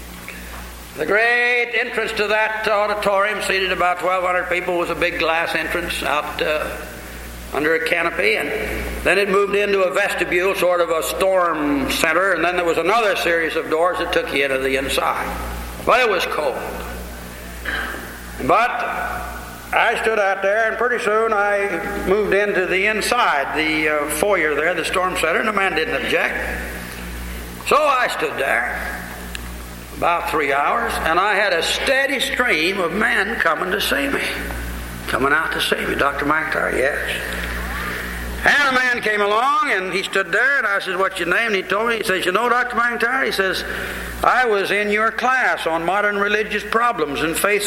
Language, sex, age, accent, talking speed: English, male, 60-79, American, 175 wpm